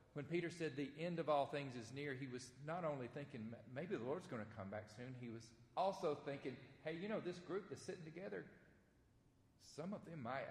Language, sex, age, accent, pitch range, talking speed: English, male, 40-59, American, 120-170 Hz, 225 wpm